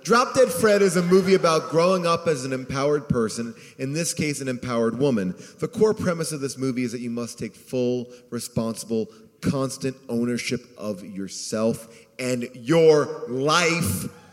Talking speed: 165 wpm